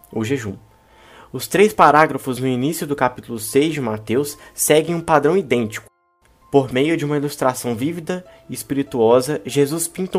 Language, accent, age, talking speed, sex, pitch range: Portuguese, Brazilian, 20-39, 155 wpm, male, 125-170 Hz